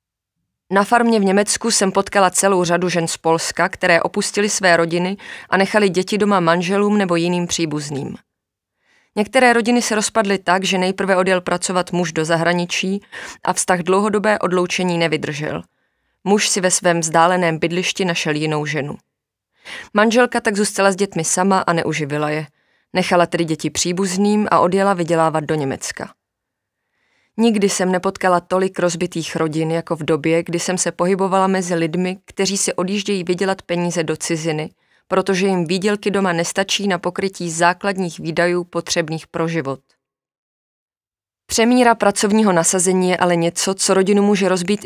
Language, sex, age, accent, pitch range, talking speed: Czech, female, 30-49, native, 170-195 Hz, 150 wpm